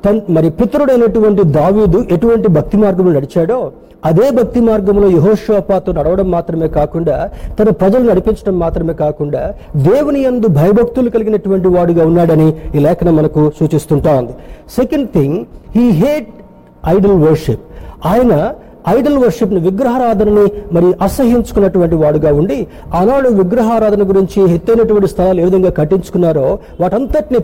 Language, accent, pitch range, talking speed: Telugu, native, 160-210 Hz, 115 wpm